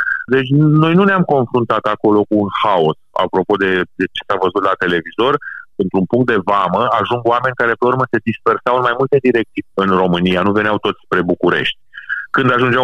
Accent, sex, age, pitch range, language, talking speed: native, male, 30-49, 100-130 Hz, Romanian, 190 wpm